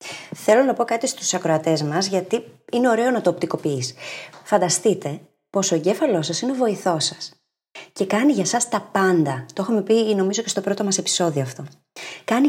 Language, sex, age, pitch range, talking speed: Greek, female, 30-49, 170-225 Hz, 185 wpm